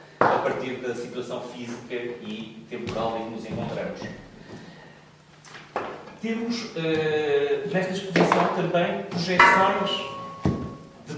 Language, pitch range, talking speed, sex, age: Portuguese, 135-180 Hz, 90 wpm, male, 40-59